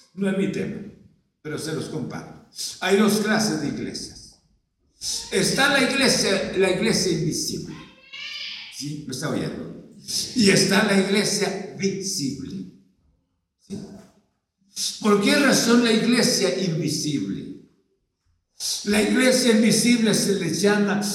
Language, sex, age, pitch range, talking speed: Spanish, male, 60-79, 195-230 Hz, 115 wpm